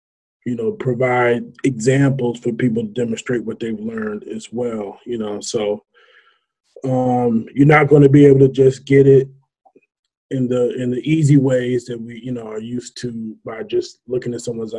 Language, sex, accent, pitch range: English, male, American, 115-140 Hz